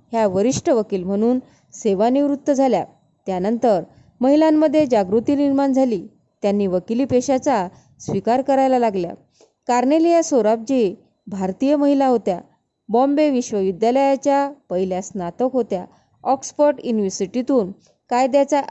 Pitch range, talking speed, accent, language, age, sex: 200-270 Hz, 95 wpm, native, Marathi, 20-39, female